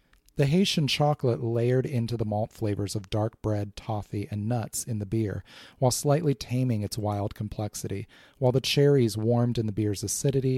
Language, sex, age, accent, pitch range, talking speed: English, male, 30-49, American, 105-130 Hz, 175 wpm